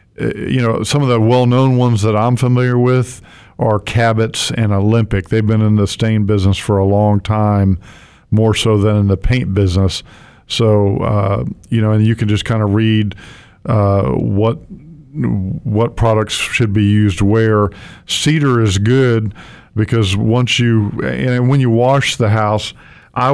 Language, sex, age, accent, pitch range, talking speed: English, male, 50-69, American, 105-115 Hz, 165 wpm